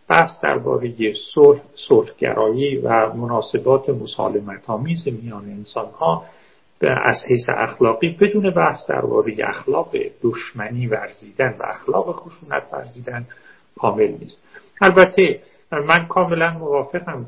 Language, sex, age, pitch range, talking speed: Persian, male, 50-69, 115-175 Hz, 95 wpm